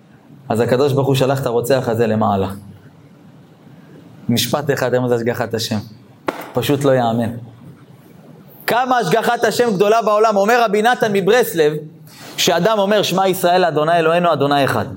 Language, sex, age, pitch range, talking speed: Hebrew, male, 30-49, 145-220 Hz, 135 wpm